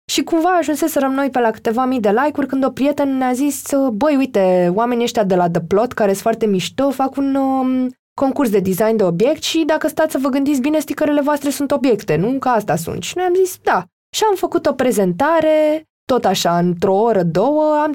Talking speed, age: 225 wpm, 20-39